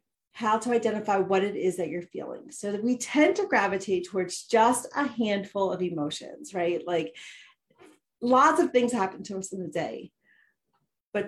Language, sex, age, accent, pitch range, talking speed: English, female, 30-49, American, 185-235 Hz, 175 wpm